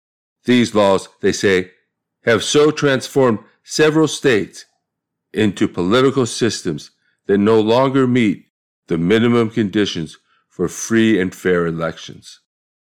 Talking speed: 110 wpm